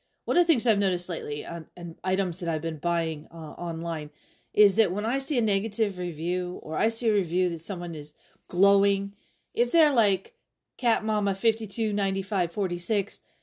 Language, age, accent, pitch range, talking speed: English, 40-59, American, 170-215 Hz, 185 wpm